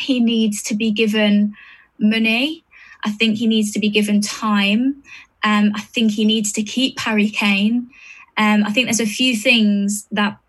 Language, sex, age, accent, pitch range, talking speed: English, female, 10-29, British, 205-225 Hz, 175 wpm